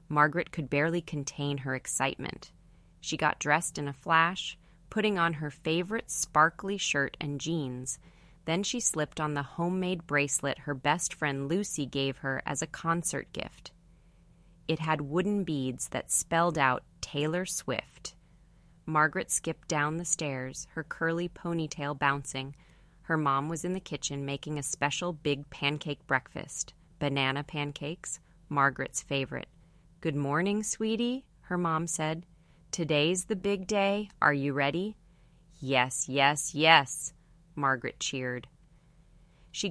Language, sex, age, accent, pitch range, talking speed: English, female, 30-49, American, 140-165 Hz, 135 wpm